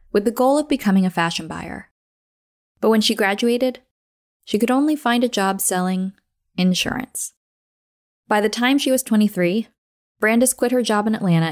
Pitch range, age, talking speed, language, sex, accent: 170-240 Hz, 20-39, 165 wpm, English, female, American